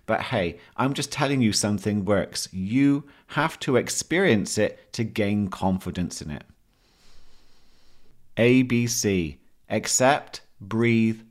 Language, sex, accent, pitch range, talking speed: English, male, British, 100-120 Hz, 120 wpm